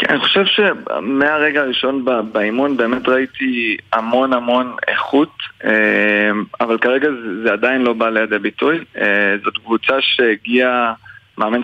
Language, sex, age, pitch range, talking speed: Hebrew, male, 20-39, 110-130 Hz, 120 wpm